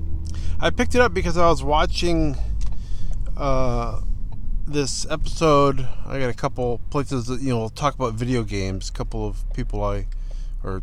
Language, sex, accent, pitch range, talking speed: English, male, American, 95-140 Hz, 160 wpm